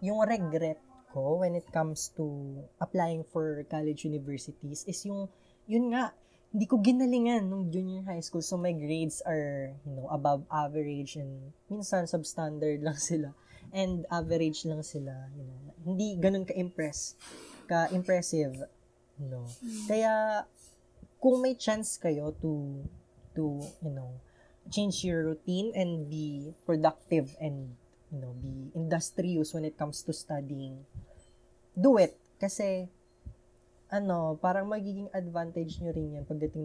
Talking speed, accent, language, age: 135 wpm, native, Filipino, 20-39